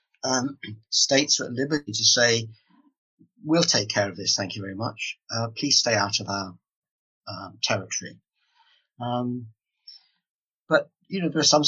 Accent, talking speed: British, 160 wpm